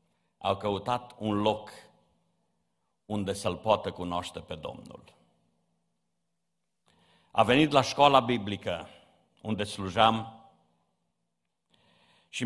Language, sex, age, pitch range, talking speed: Romanian, male, 50-69, 100-130 Hz, 85 wpm